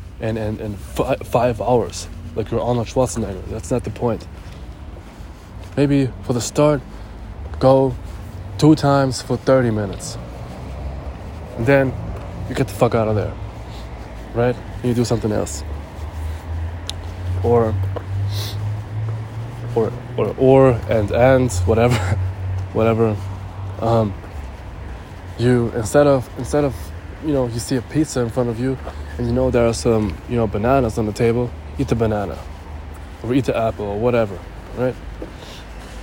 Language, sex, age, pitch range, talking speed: English, male, 20-39, 90-120 Hz, 145 wpm